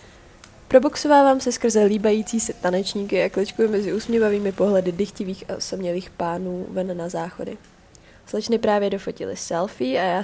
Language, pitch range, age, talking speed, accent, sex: Czech, 185-230 Hz, 20-39, 140 wpm, native, female